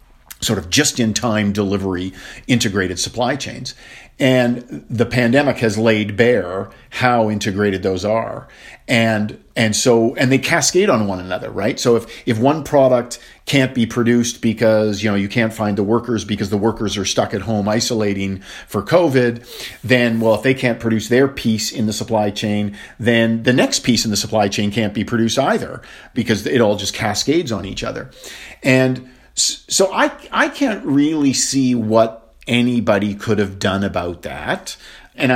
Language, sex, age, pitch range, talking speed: English, male, 50-69, 105-125 Hz, 170 wpm